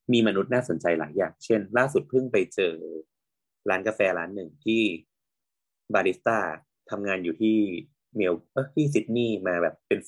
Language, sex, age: Thai, male, 20-39